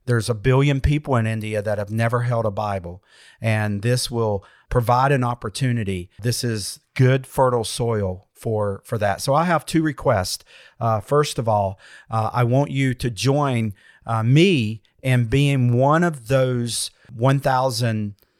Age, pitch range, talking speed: 50-69, 110-140 Hz, 160 wpm